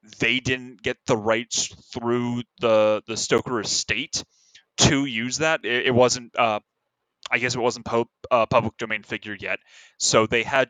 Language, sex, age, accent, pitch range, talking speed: English, male, 20-39, American, 110-130 Hz, 175 wpm